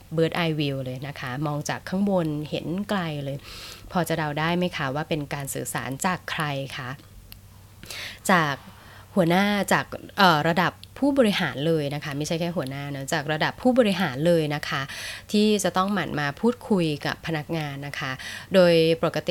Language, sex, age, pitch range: Thai, female, 20-39, 145-185 Hz